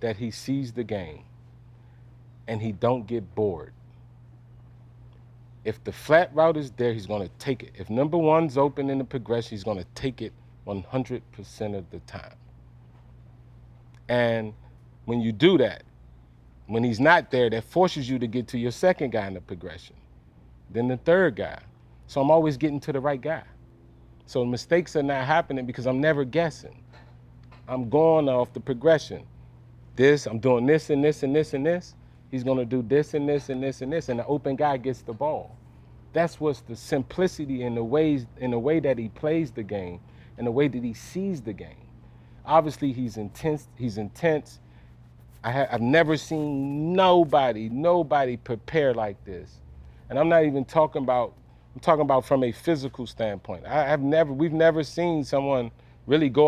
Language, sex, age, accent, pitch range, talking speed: English, male, 40-59, American, 110-145 Hz, 180 wpm